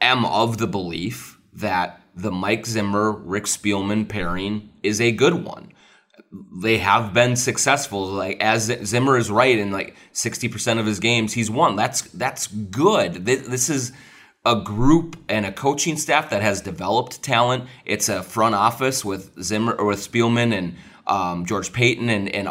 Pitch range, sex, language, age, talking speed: 95-120 Hz, male, English, 30-49, 170 wpm